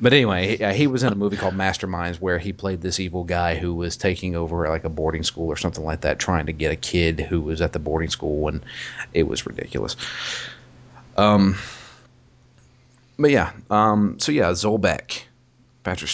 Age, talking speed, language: 30-49, 190 wpm, English